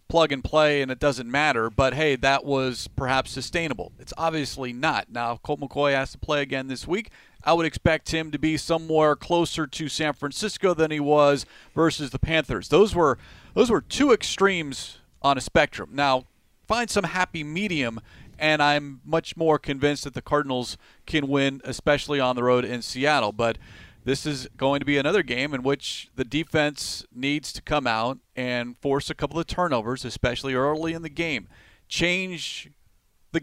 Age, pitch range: 40-59, 130-160 Hz